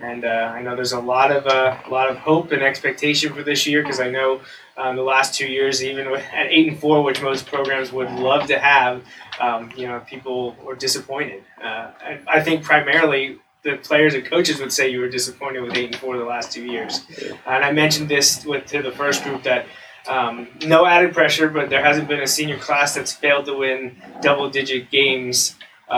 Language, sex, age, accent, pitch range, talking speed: English, male, 20-39, American, 120-140 Hz, 220 wpm